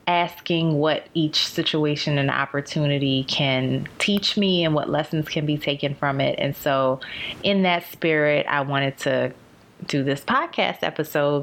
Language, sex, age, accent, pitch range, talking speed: English, female, 20-39, American, 140-160 Hz, 150 wpm